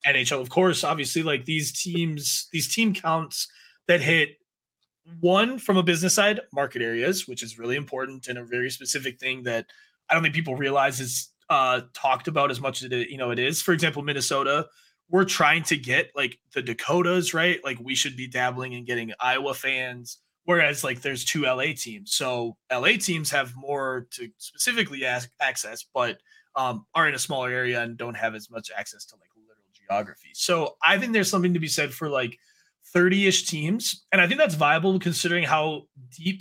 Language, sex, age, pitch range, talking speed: English, male, 20-39, 130-175 Hz, 195 wpm